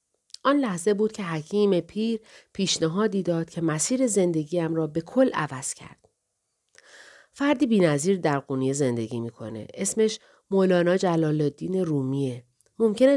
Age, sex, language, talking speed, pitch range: 40-59, female, Persian, 130 wpm, 150-210 Hz